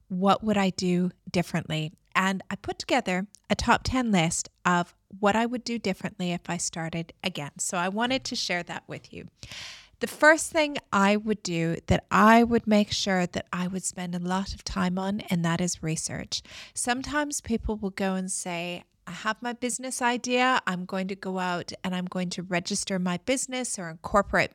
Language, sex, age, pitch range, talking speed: English, female, 30-49, 180-230 Hz, 195 wpm